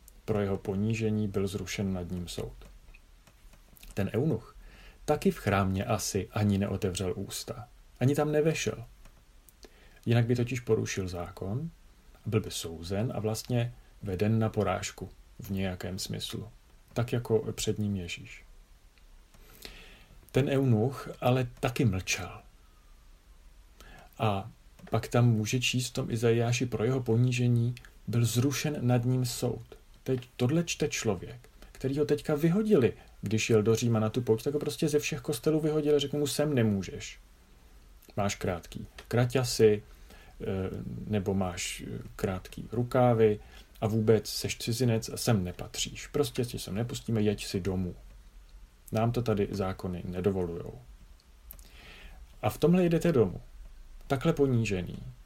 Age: 40-59